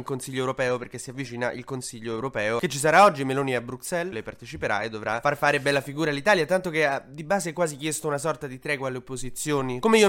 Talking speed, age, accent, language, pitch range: 245 wpm, 20-39, native, Italian, 130-160 Hz